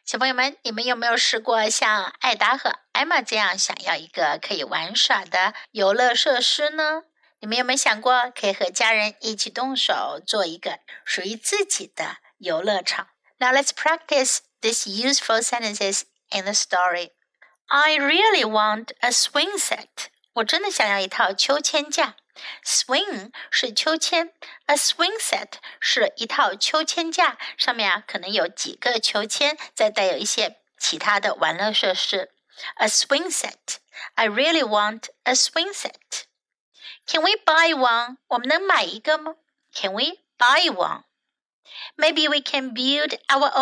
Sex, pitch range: female, 220-310 Hz